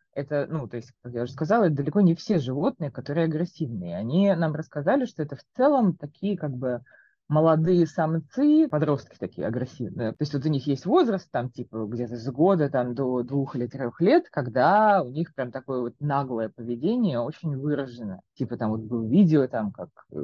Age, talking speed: 20-39, 195 wpm